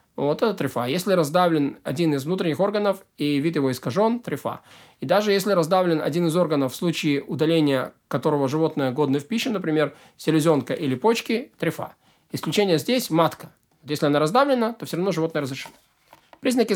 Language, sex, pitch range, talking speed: Russian, male, 150-195 Hz, 165 wpm